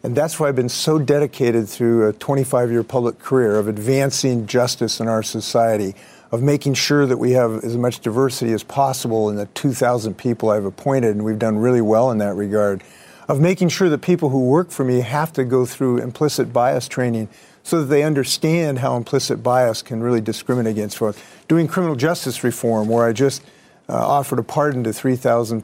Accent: American